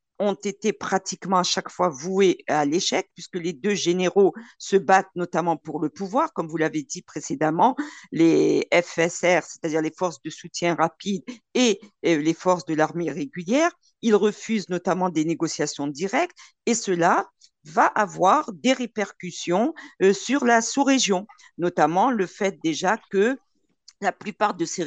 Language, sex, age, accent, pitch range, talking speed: French, female, 50-69, French, 175-225 Hz, 150 wpm